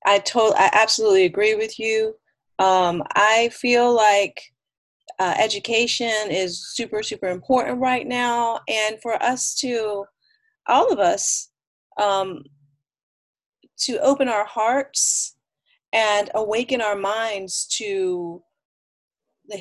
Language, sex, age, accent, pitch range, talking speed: English, female, 30-49, American, 185-245 Hz, 115 wpm